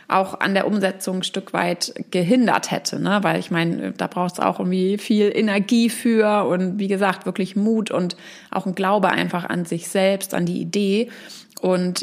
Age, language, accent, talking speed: 30-49, German, German, 190 wpm